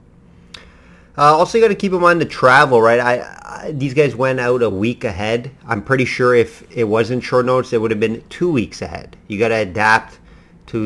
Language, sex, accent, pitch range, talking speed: English, male, American, 100-120 Hz, 220 wpm